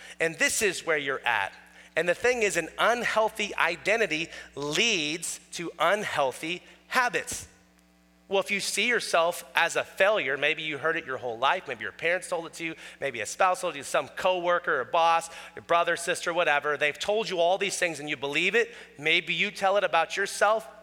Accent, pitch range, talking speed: American, 160-215 Hz, 200 wpm